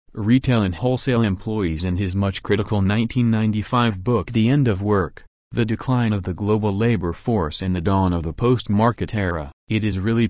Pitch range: 90-115 Hz